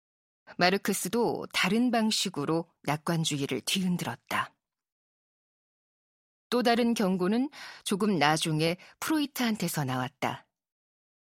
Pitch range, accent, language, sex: 165-220 Hz, native, Korean, female